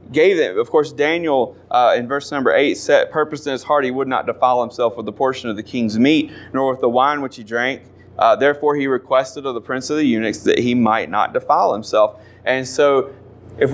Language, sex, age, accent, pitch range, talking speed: English, male, 30-49, American, 115-145 Hz, 230 wpm